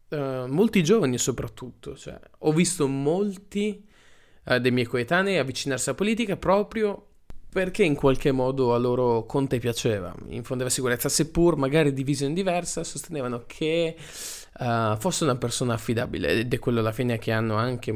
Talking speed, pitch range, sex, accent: 155 wpm, 110-145 Hz, male, native